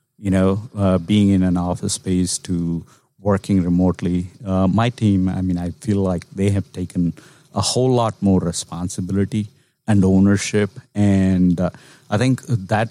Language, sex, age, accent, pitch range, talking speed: English, male, 50-69, Indian, 90-105 Hz, 160 wpm